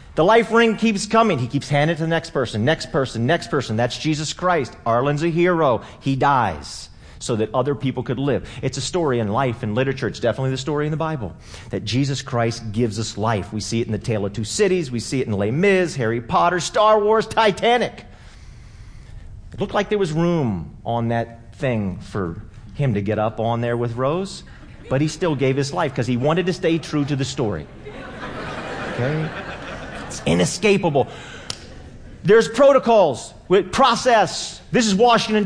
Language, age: English, 40-59